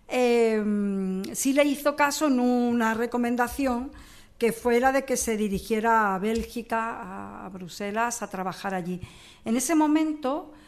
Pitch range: 210-260 Hz